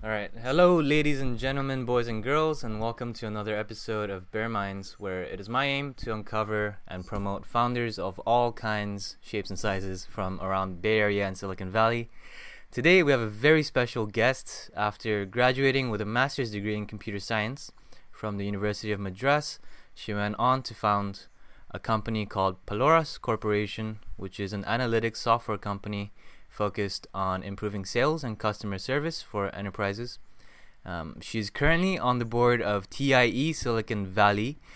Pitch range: 100-120 Hz